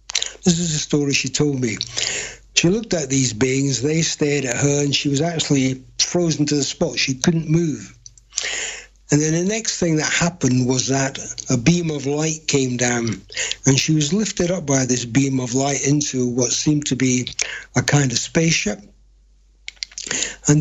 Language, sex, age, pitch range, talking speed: English, male, 60-79, 135-160 Hz, 180 wpm